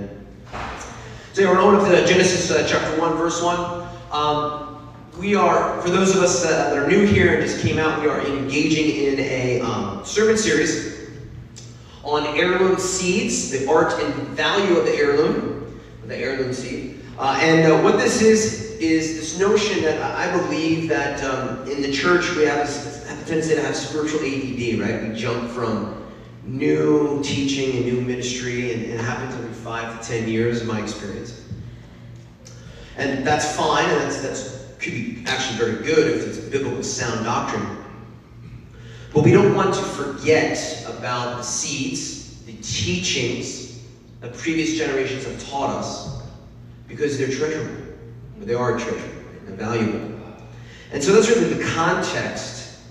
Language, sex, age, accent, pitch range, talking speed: English, male, 30-49, American, 115-155 Hz, 160 wpm